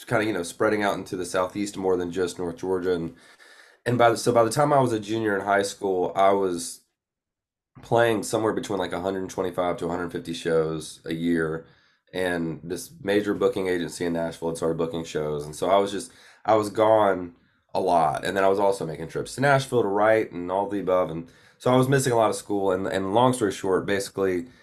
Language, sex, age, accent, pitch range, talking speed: English, male, 20-39, American, 85-110 Hz, 225 wpm